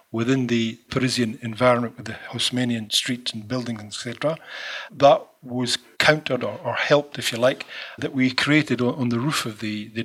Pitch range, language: 120-135 Hz, English